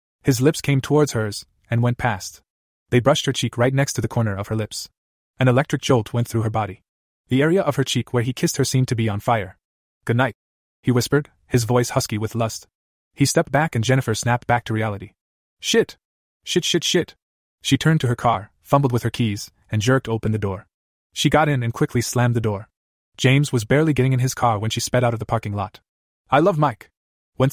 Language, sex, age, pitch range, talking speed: English, male, 20-39, 110-135 Hz, 225 wpm